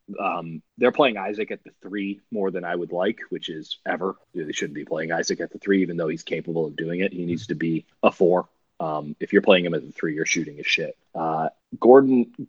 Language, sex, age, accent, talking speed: English, male, 30-49, American, 240 wpm